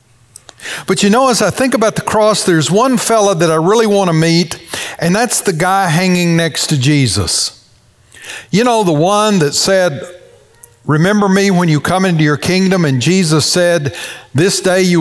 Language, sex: English, male